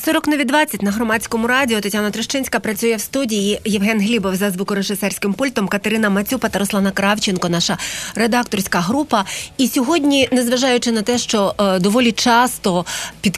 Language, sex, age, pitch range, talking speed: Ukrainian, female, 30-49, 200-250 Hz, 150 wpm